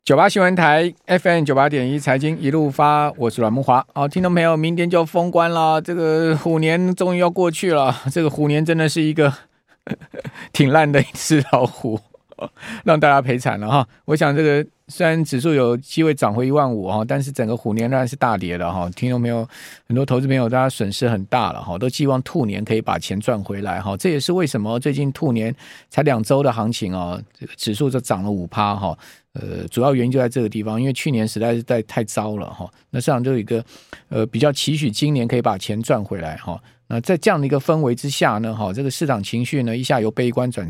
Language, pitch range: Chinese, 110-155 Hz